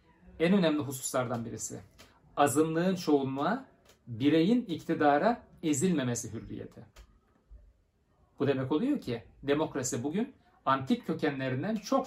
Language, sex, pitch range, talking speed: Turkish, male, 125-180 Hz, 95 wpm